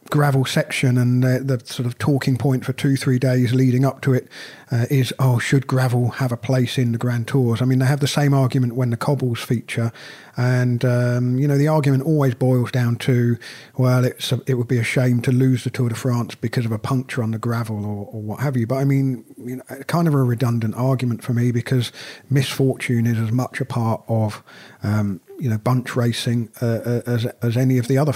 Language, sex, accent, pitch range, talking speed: English, male, British, 120-140 Hz, 230 wpm